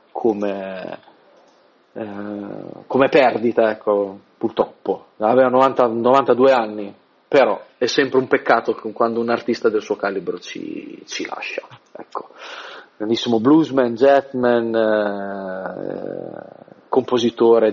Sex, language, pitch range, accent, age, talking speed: male, Italian, 110-140 Hz, native, 40-59, 100 wpm